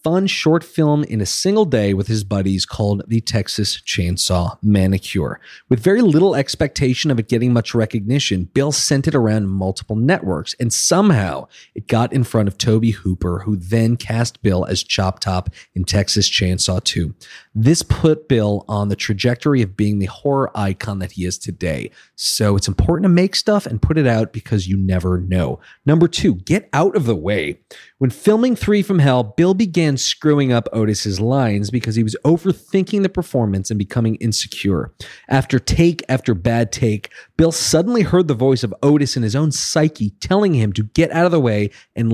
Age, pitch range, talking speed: 40-59, 100-155 Hz, 185 wpm